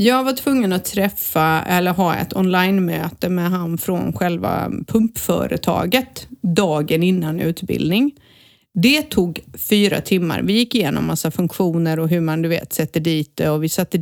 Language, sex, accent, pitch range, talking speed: Swedish, female, native, 175-230 Hz, 160 wpm